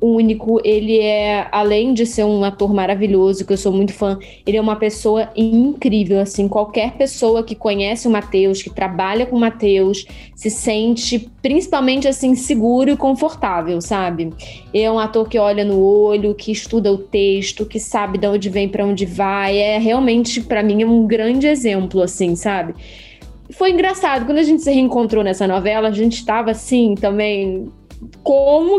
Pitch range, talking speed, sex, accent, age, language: 195-245 Hz, 175 wpm, female, Brazilian, 10-29, Portuguese